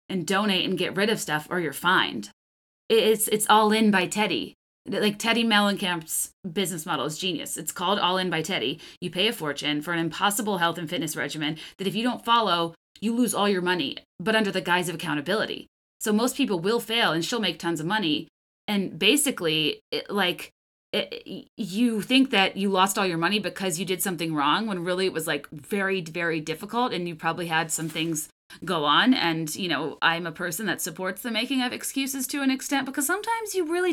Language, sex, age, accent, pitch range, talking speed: English, female, 30-49, American, 170-245 Hz, 210 wpm